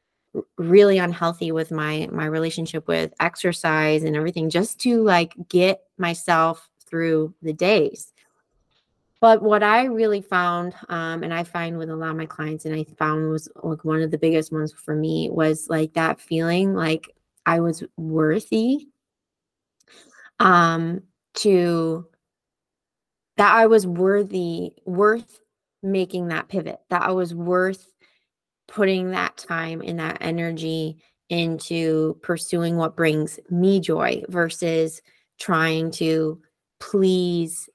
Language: English